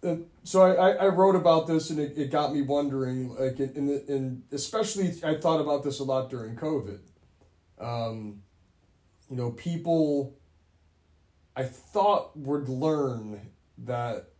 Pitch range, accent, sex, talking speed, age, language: 115-145 Hz, American, male, 140 wpm, 30-49, English